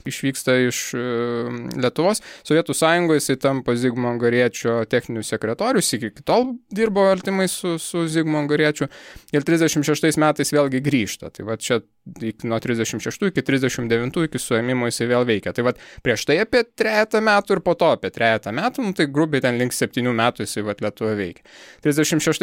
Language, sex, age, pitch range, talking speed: English, male, 20-39, 115-150 Hz, 160 wpm